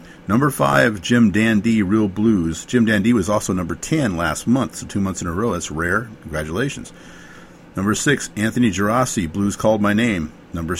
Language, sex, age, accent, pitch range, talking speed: English, male, 50-69, American, 90-120 Hz, 180 wpm